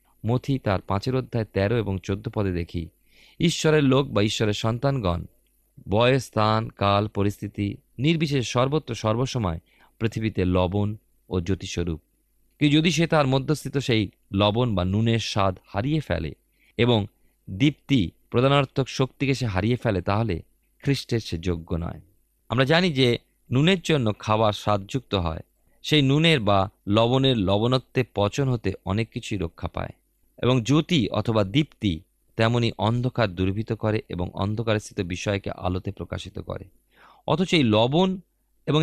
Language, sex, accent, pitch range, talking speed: Bengali, male, native, 95-130 Hz, 130 wpm